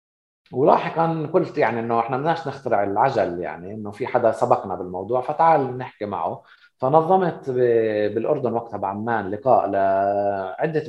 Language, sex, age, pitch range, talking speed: Arabic, male, 30-49, 105-145 Hz, 120 wpm